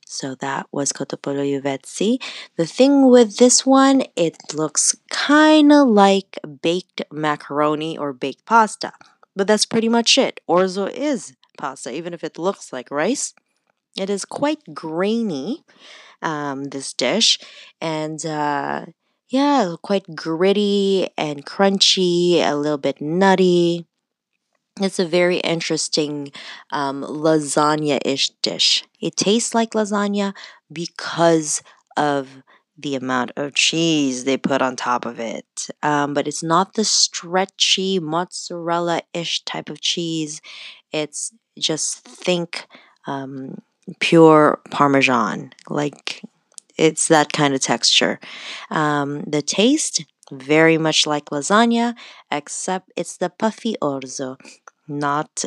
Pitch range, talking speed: 145-200 Hz, 120 wpm